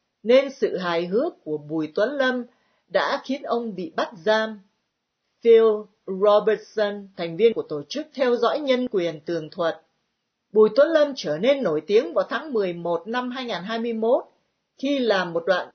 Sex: female